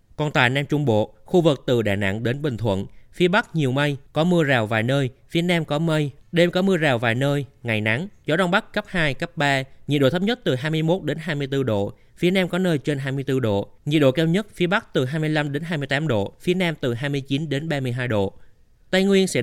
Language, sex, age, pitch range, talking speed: Vietnamese, male, 20-39, 120-160 Hz, 240 wpm